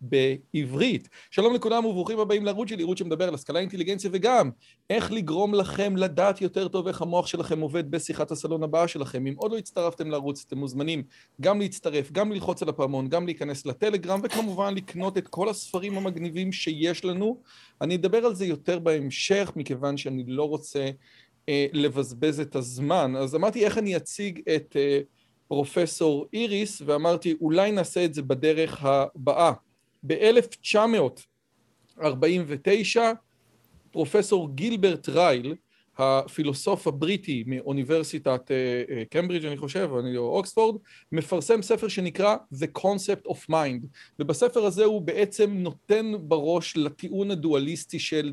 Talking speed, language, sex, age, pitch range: 130 wpm, Hebrew, male, 40-59, 145-195 Hz